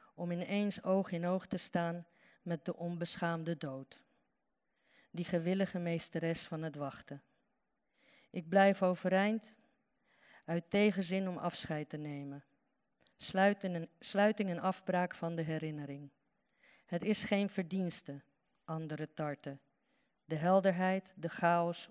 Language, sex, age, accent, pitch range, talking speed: Dutch, female, 40-59, Dutch, 160-215 Hz, 115 wpm